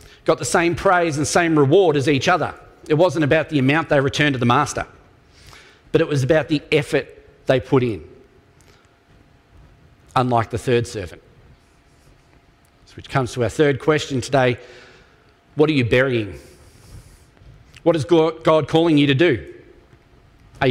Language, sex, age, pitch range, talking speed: English, male, 40-59, 130-165 Hz, 150 wpm